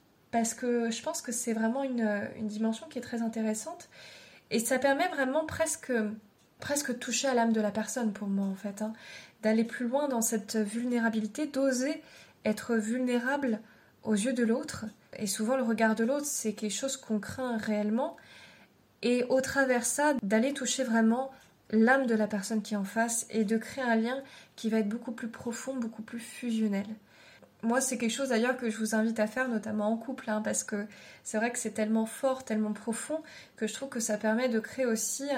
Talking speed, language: 200 wpm, French